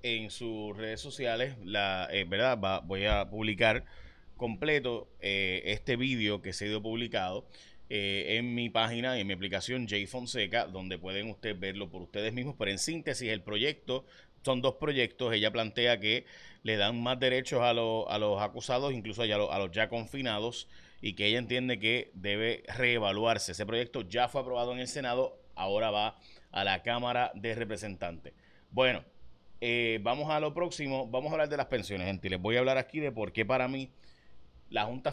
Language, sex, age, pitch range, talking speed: Spanish, male, 30-49, 105-135 Hz, 190 wpm